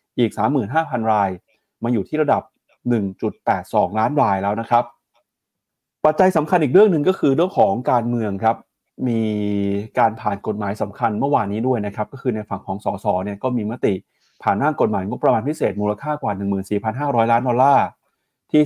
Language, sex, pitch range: Thai, male, 105-130 Hz